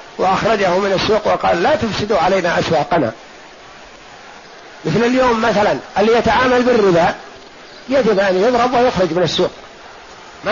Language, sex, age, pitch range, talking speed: Arabic, male, 50-69, 185-220 Hz, 120 wpm